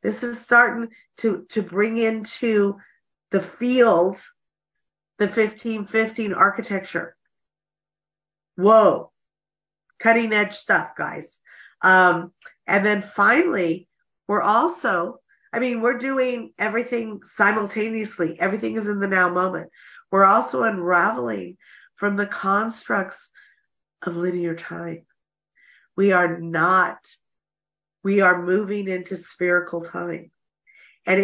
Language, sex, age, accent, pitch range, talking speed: English, female, 50-69, American, 175-215 Hz, 100 wpm